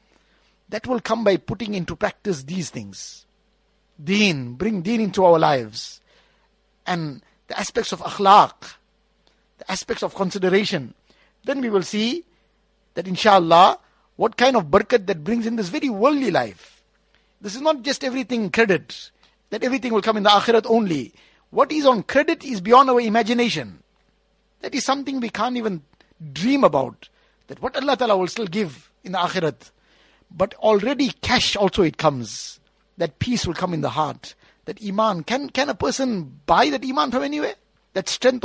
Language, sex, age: English, male, 60-79